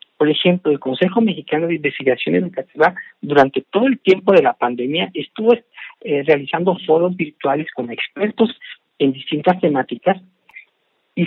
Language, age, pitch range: Spanish, 50-69, 140-205 Hz